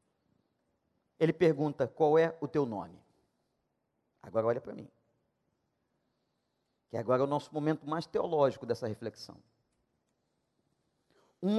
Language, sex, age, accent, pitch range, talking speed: Portuguese, male, 40-59, Brazilian, 175-290 Hz, 115 wpm